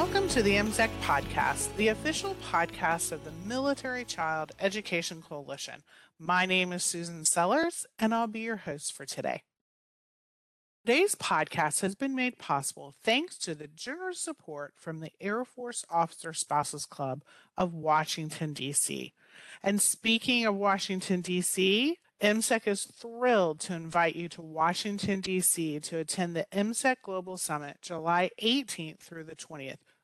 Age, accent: 40-59, American